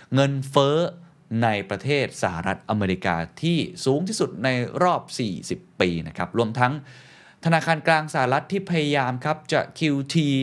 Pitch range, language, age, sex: 115-160 Hz, Thai, 20-39, male